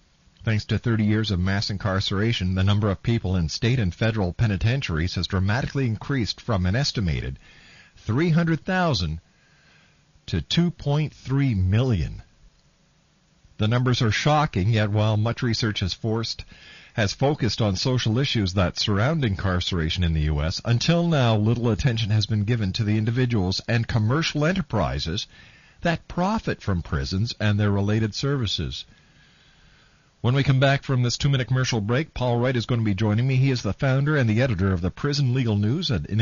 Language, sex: English, male